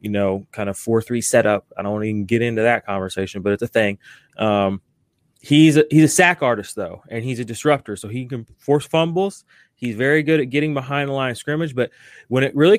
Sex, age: male, 20-39